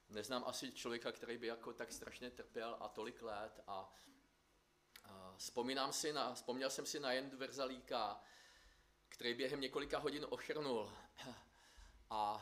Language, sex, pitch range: Czech, male, 105-130 Hz